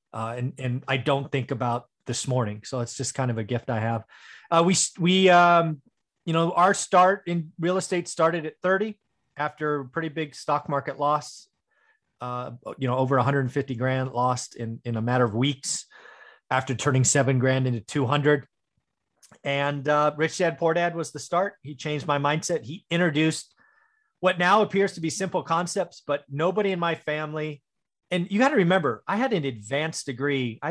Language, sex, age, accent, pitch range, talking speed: English, male, 30-49, American, 130-165 Hz, 185 wpm